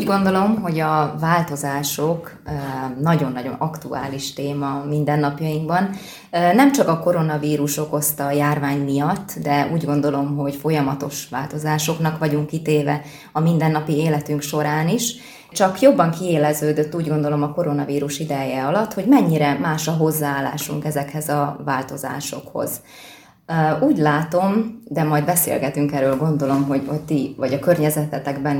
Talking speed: 125 wpm